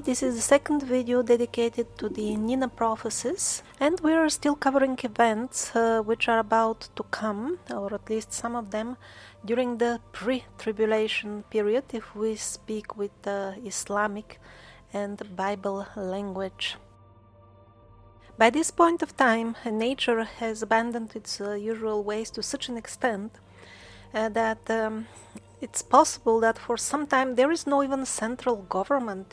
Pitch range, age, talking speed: 205-240 Hz, 30-49, 145 wpm